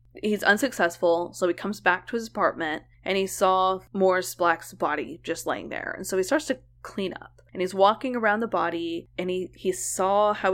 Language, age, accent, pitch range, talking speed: English, 20-39, American, 170-195 Hz, 205 wpm